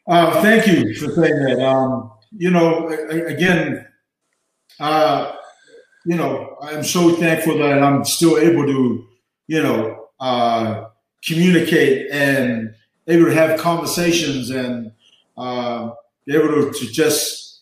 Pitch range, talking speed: 125-160 Hz, 125 wpm